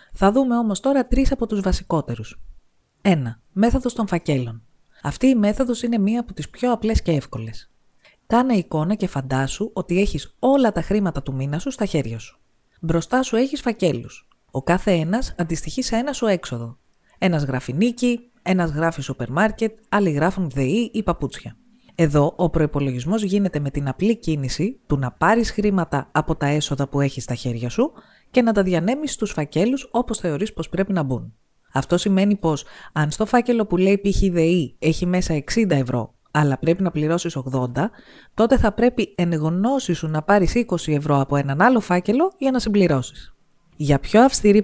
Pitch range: 145-220 Hz